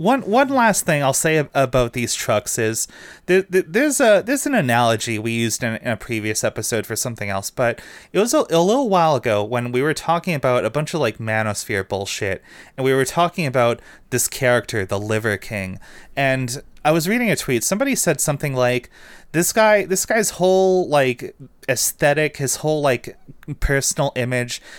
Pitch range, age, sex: 110-155 Hz, 30-49, male